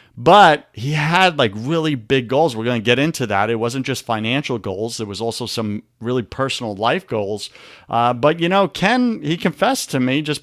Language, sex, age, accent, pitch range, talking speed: English, male, 40-59, American, 115-155 Hz, 205 wpm